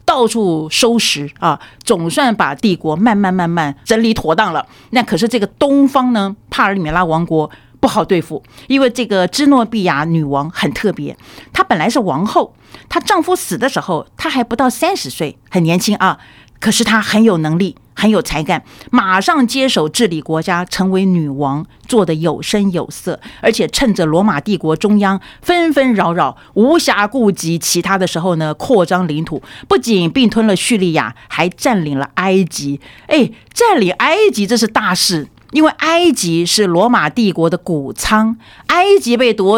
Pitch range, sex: 165-235 Hz, female